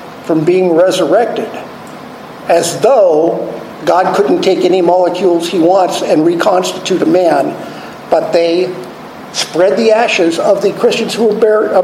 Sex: male